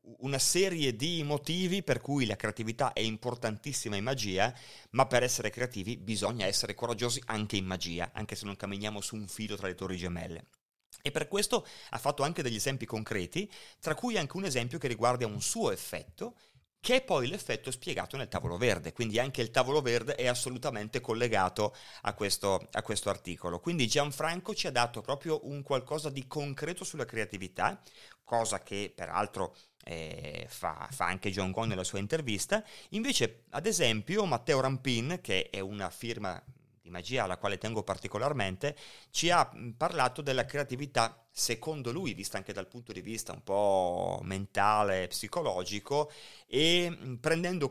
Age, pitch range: 30-49, 105-145 Hz